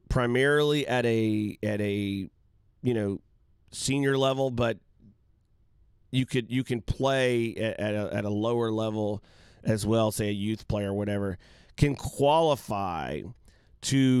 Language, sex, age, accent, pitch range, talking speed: English, male, 40-59, American, 100-125 Hz, 135 wpm